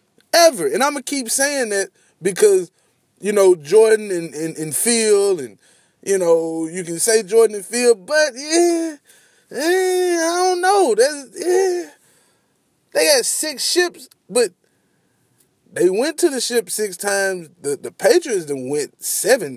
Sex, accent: male, American